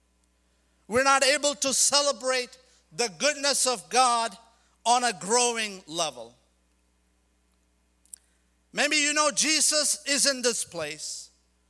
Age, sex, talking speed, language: 50-69, male, 110 wpm, English